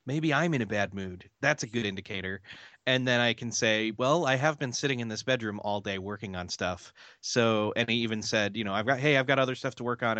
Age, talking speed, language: 30-49, 265 wpm, English